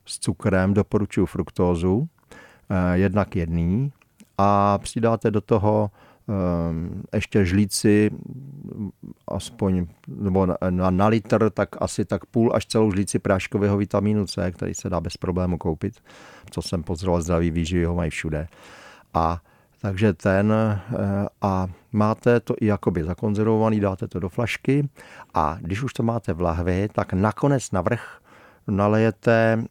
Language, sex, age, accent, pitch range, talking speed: Czech, male, 50-69, native, 95-110 Hz, 140 wpm